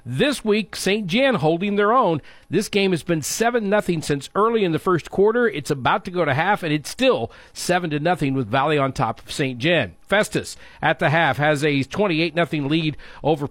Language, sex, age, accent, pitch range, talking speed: English, male, 50-69, American, 140-180 Hz, 210 wpm